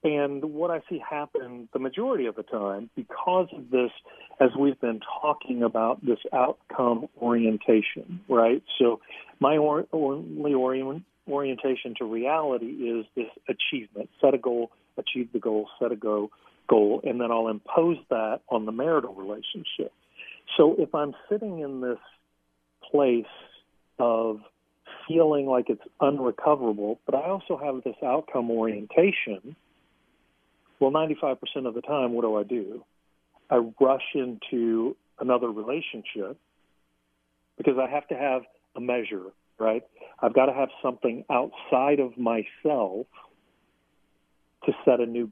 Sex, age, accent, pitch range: male, 40-59, American, 110-140 Hz